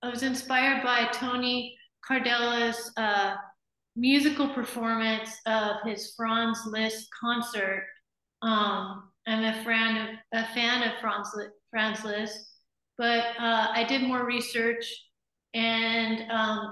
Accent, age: American, 30-49